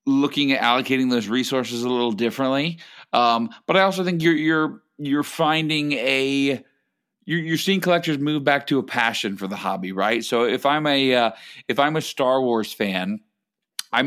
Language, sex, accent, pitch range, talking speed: English, male, American, 115-150 Hz, 185 wpm